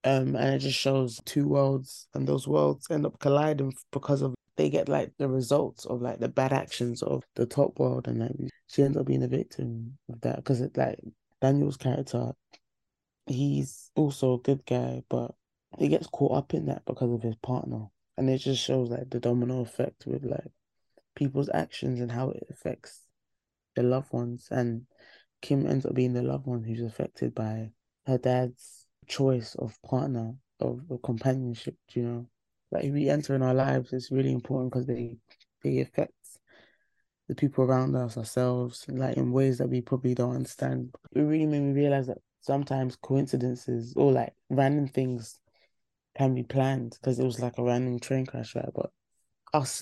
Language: English